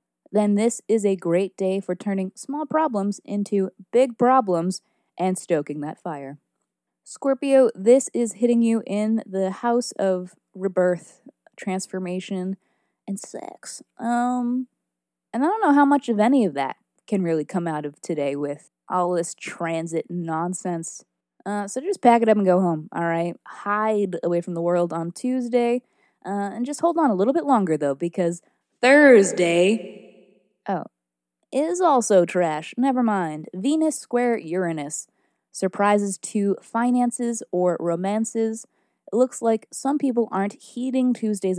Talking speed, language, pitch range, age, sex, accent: 150 wpm, English, 175-240 Hz, 20-39, female, American